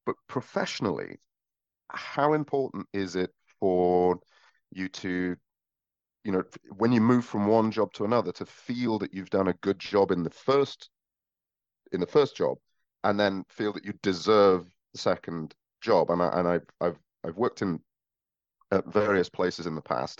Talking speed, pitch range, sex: 170 wpm, 90-110 Hz, male